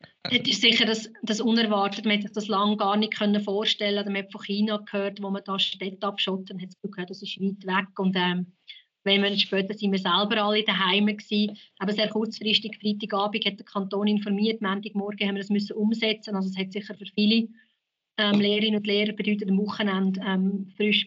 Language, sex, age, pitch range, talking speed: German, female, 30-49, 200-215 Hz, 210 wpm